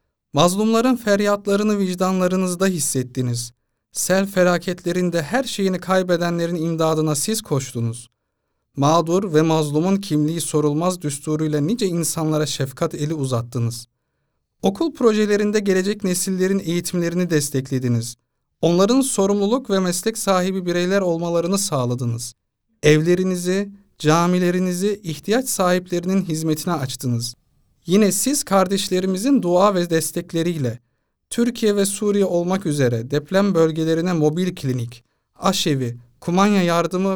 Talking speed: 100 wpm